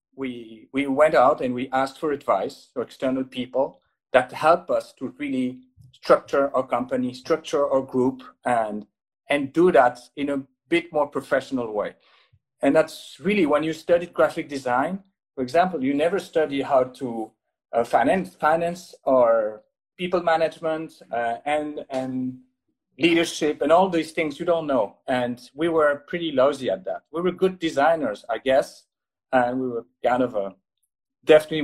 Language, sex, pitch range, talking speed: English, male, 130-165 Hz, 160 wpm